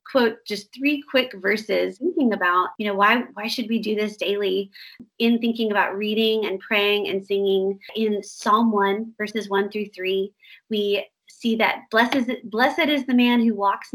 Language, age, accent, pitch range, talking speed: English, 30-49, American, 200-245 Hz, 175 wpm